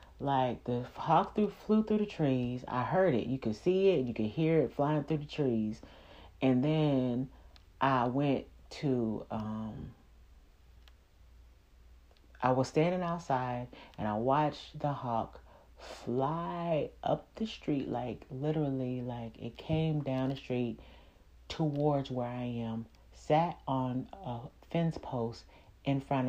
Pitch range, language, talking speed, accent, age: 115-145 Hz, English, 135 wpm, American, 40-59